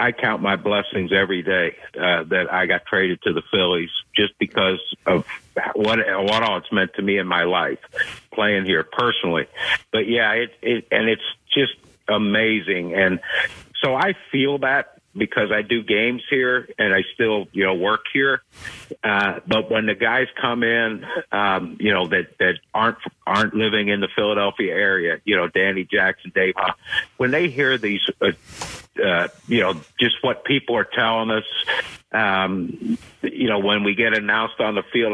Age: 60-79